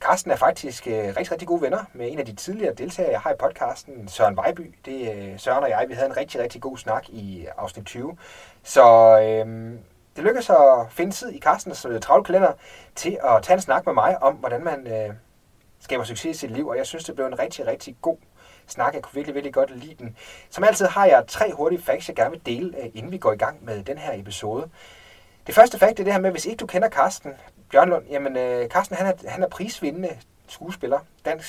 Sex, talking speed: male, 235 wpm